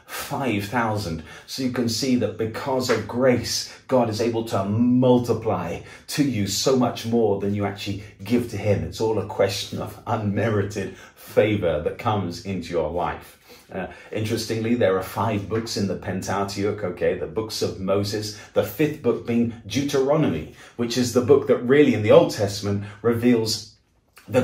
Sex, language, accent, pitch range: male, English, British, 100-125 Hz